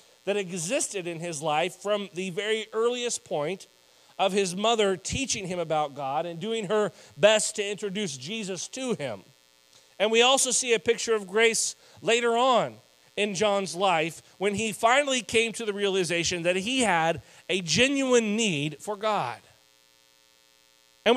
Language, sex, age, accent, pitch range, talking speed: English, male, 40-59, American, 140-220 Hz, 155 wpm